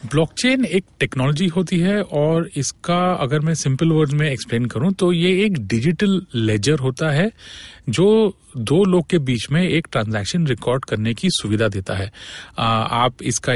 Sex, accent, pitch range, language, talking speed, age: male, native, 115-155 Hz, Hindi, 165 wpm, 40-59